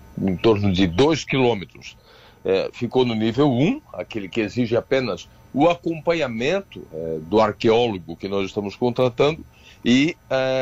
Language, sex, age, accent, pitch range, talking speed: Portuguese, male, 60-79, Brazilian, 110-150 Hz, 145 wpm